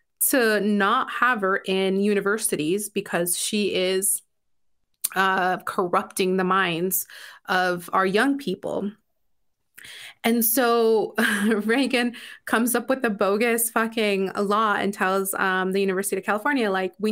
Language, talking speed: English, 125 wpm